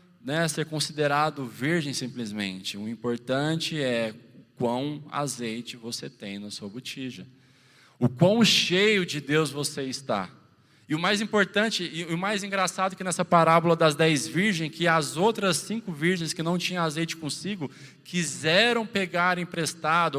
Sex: male